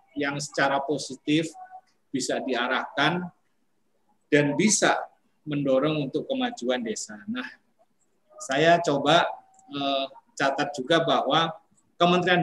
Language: Indonesian